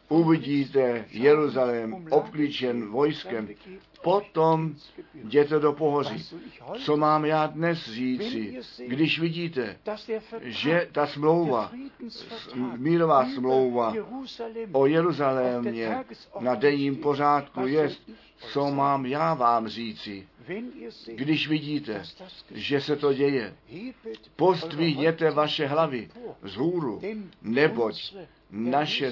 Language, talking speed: Czech, 90 wpm